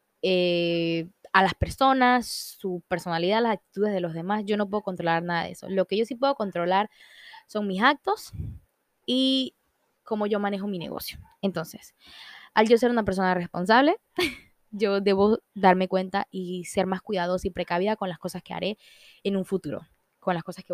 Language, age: Spanish, 10-29